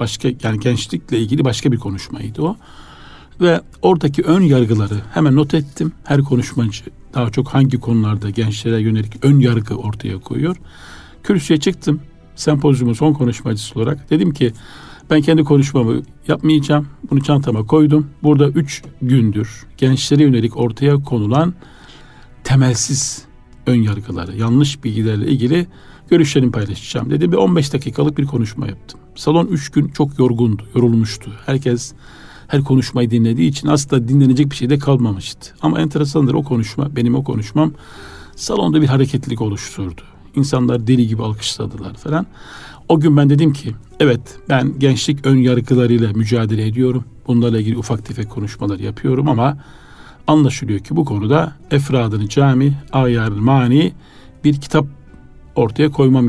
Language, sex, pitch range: Turkish, male, 115-145 Hz